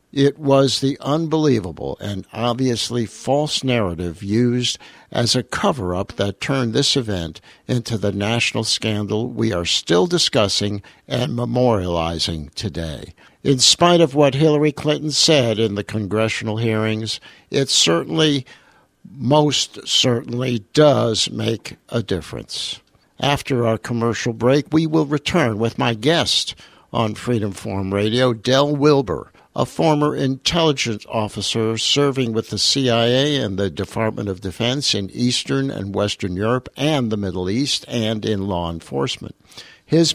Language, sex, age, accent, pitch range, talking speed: English, male, 60-79, American, 105-135 Hz, 135 wpm